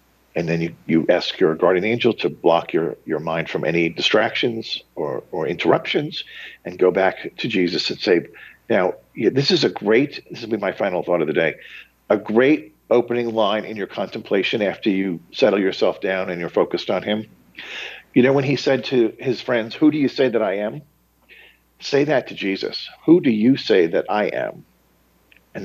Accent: American